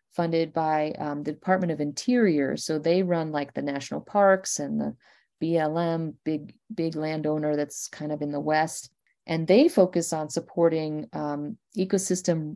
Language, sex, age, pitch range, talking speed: English, female, 40-59, 155-190 Hz, 160 wpm